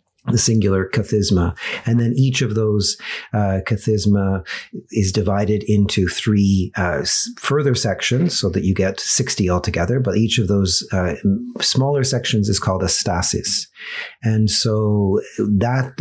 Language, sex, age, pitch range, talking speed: English, male, 40-59, 95-115 Hz, 140 wpm